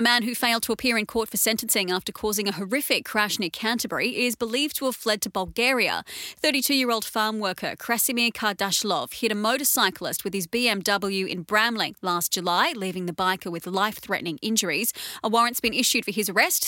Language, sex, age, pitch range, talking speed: English, female, 30-49, 195-250 Hz, 185 wpm